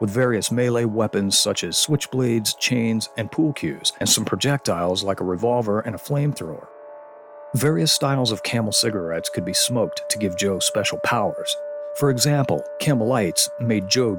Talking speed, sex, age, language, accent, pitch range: 160 wpm, male, 40-59, English, American, 100-145 Hz